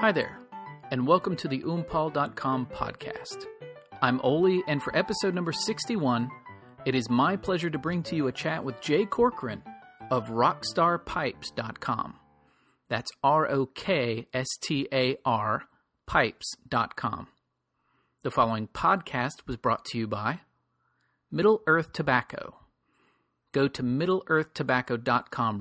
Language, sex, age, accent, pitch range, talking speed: English, male, 40-59, American, 115-160 Hz, 110 wpm